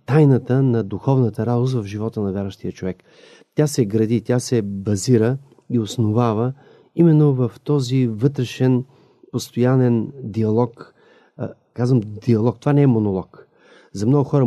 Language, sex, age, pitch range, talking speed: Bulgarian, male, 40-59, 110-140 Hz, 135 wpm